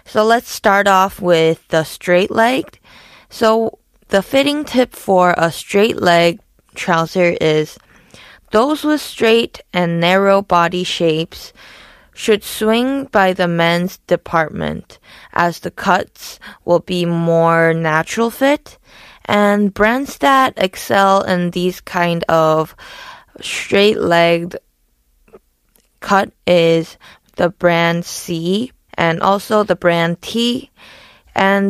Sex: female